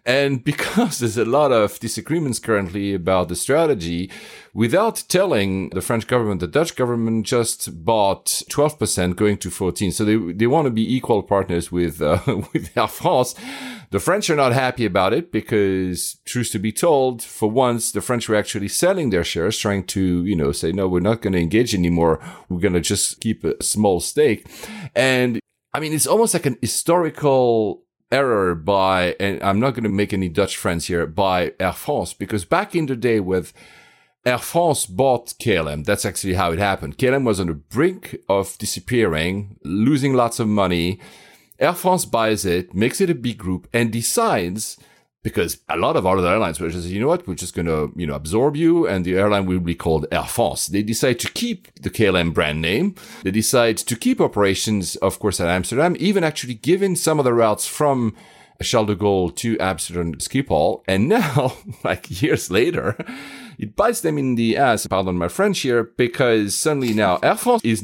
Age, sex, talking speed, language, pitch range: 40-59, male, 195 wpm, English, 95-125 Hz